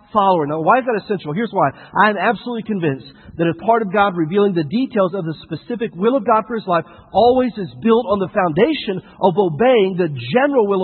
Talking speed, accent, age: 215 wpm, American, 50-69